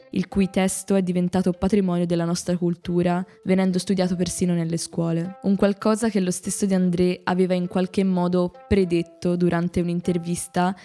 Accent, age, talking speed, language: native, 10-29, 150 wpm, Italian